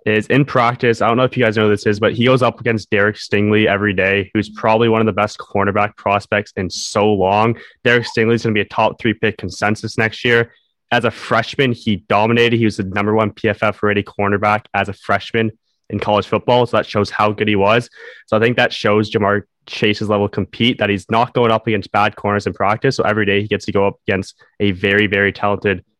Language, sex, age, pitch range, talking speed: English, male, 20-39, 100-115 Hz, 240 wpm